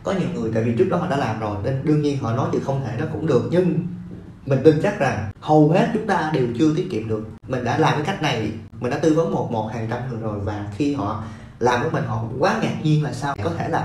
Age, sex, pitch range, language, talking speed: 20-39, male, 115-155 Hz, Vietnamese, 295 wpm